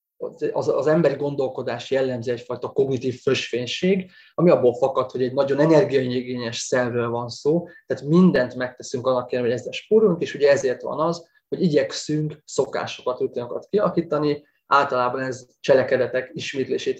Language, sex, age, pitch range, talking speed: Hungarian, male, 20-39, 125-170 Hz, 140 wpm